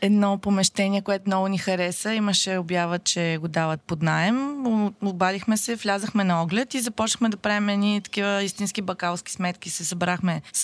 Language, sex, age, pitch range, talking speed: Bulgarian, female, 20-39, 180-230 Hz, 170 wpm